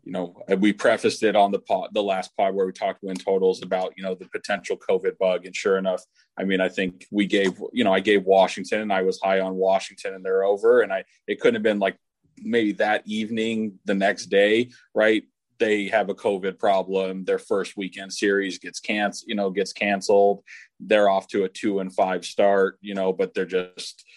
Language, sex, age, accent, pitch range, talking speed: English, male, 30-49, American, 95-120 Hz, 220 wpm